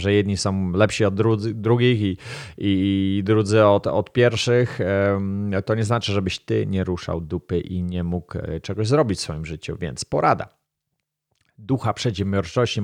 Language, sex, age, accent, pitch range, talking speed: Polish, male, 30-49, native, 95-115 Hz, 160 wpm